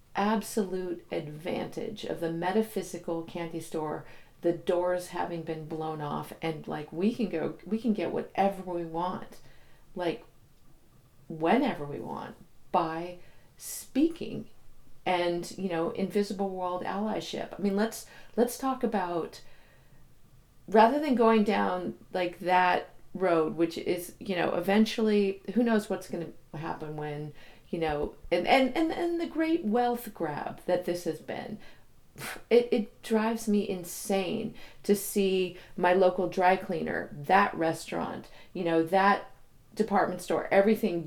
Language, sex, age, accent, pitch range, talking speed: English, female, 40-59, American, 165-205 Hz, 135 wpm